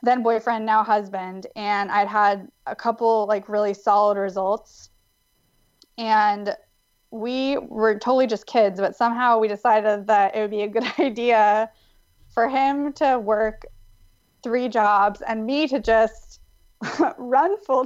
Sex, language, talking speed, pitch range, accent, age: female, English, 140 wpm, 200-235 Hz, American, 20-39